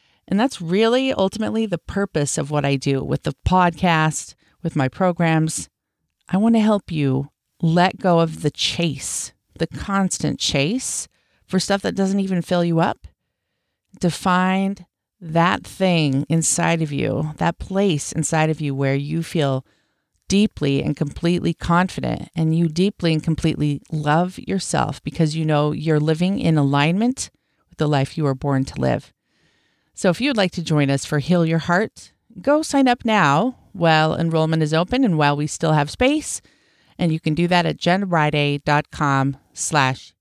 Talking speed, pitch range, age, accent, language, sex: 165 wpm, 150-190 Hz, 40-59, American, English, female